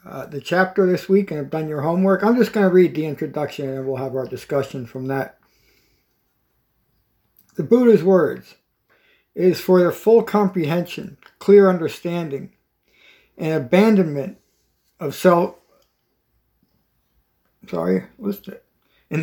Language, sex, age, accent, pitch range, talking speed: English, male, 60-79, American, 145-185 Hz, 130 wpm